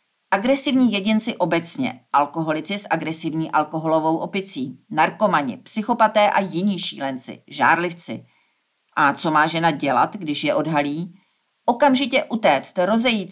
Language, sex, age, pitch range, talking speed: Czech, female, 40-59, 155-200 Hz, 115 wpm